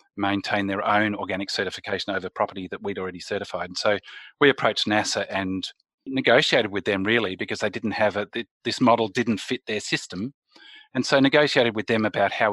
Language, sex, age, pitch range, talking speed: English, male, 30-49, 100-115 Hz, 185 wpm